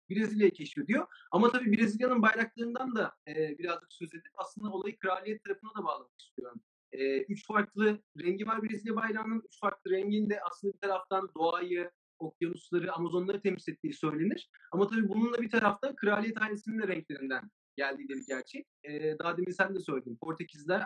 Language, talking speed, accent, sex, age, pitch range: Turkish, 160 wpm, native, male, 40-59, 155-210 Hz